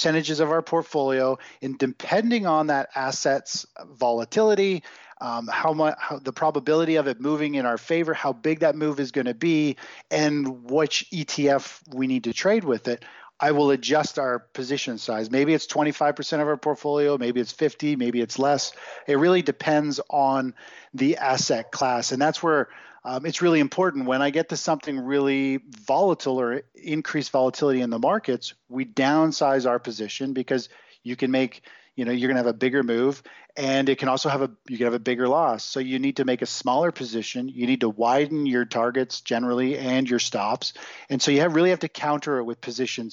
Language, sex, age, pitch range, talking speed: English, male, 40-59, 125-150 Hz, 200 wpm